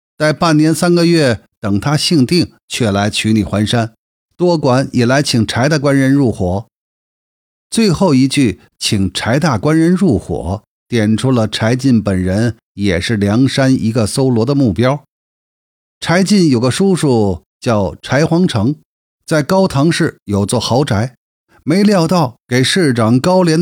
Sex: male